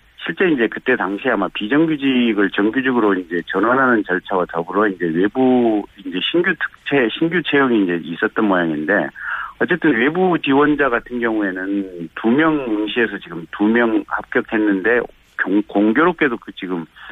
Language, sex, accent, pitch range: Korean, male, native, 100-145 Hz